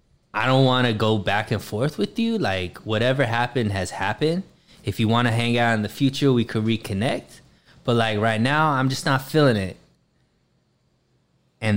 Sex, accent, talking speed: male, American, 190 wpm